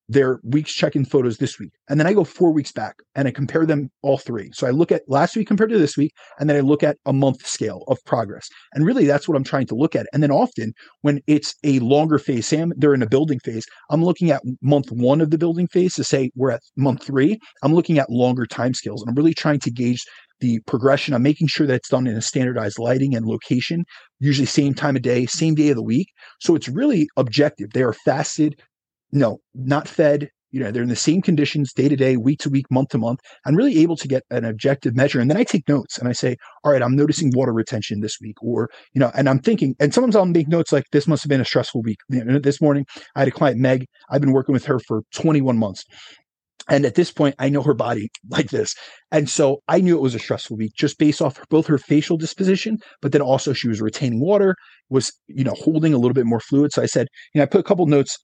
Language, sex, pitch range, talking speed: English, male, 125-150 Hz, 260 wpm